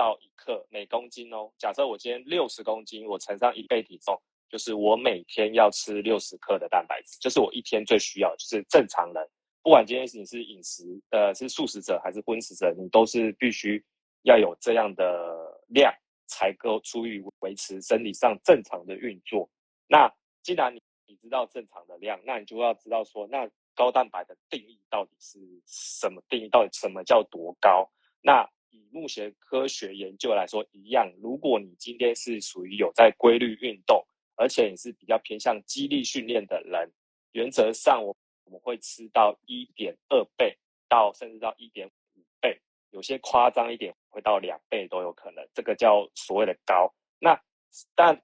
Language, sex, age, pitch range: Chinese, male, 20-39, 105-130 Hz